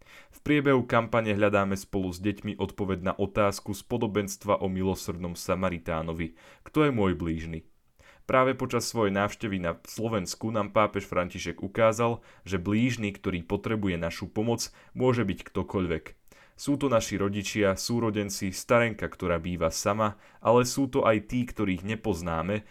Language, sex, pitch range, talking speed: Slovak, male, 90-115 Hz, 145 wpm